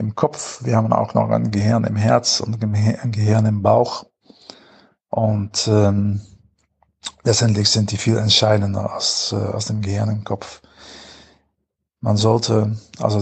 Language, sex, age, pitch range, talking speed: German, male, 50-69, 100-115 Hz, 145 wpm